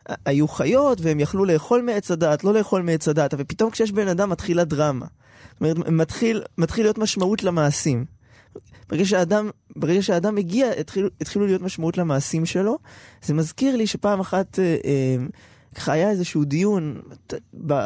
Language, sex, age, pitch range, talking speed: Hebrew, male, 20-39, 150-200 Hz, 170 wpm